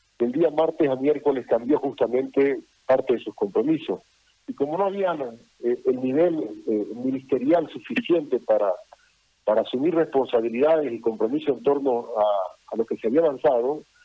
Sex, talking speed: male, 155 wpm